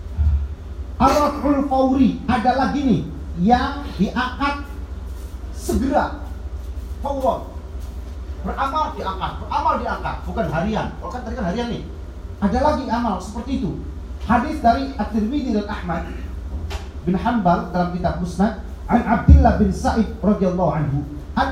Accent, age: native, 40-59